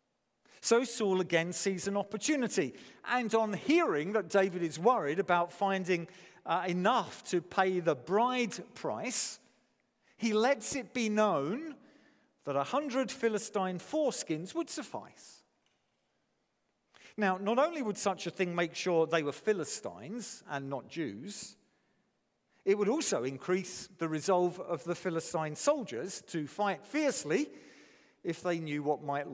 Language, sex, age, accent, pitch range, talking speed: English, male, 50-69, British, 155-225 Hz, 135 wpm